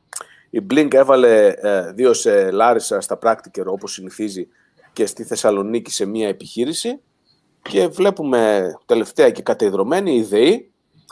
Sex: male